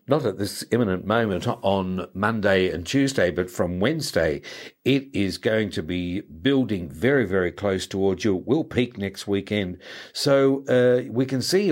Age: 60-79